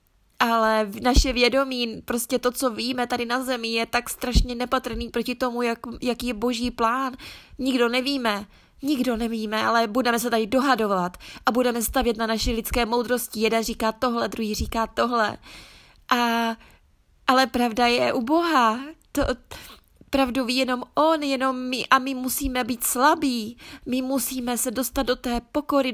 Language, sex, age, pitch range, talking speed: Czech, female, 20-39, 230-260 Hz, 155 wpm